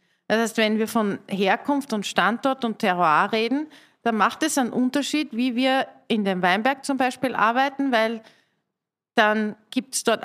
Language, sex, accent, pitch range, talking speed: German, female, Austrian, 200-250 Hz, 170 wpm